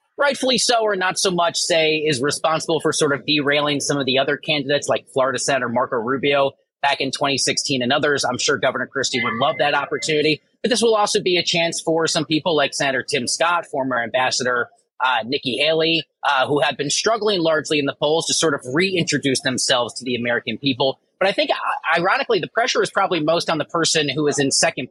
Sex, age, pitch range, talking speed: male, 30-49, 135-165 Hz, 215 wpm